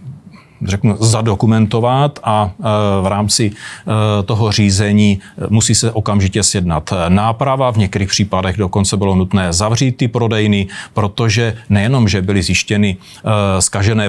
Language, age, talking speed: Czech, 40-59, 115 wpm